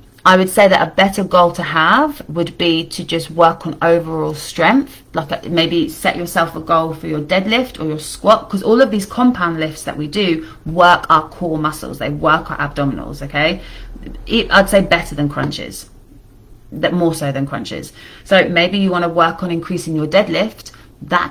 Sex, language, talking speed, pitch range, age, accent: female, English, 190 wpm, 155-185 Hz, 30-49, British